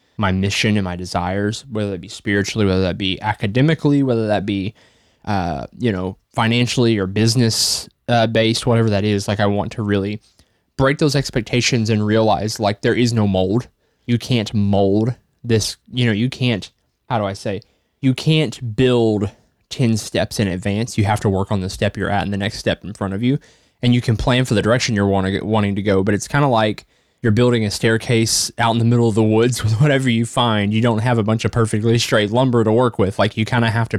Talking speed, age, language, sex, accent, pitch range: 225 wpm, 20-39, English, male, American, 100-120 Hz